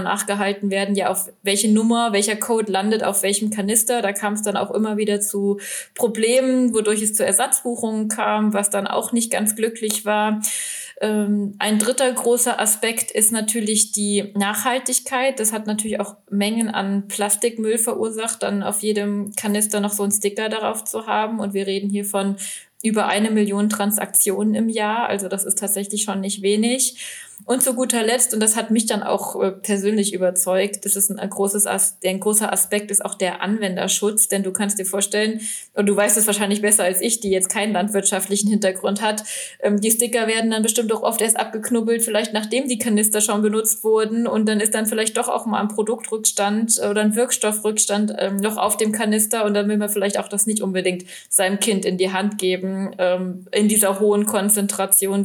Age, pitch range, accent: 20-39, 200-220 Hz, German